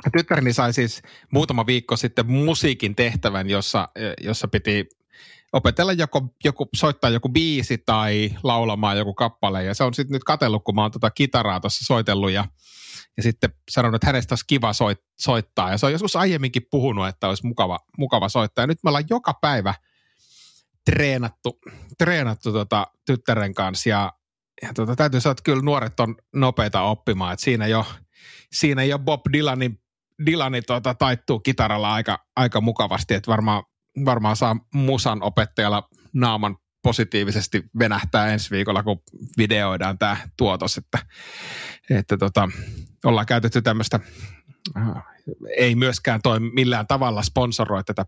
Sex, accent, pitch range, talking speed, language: male, native, 105-130 Hz, 145 wpm, Finnish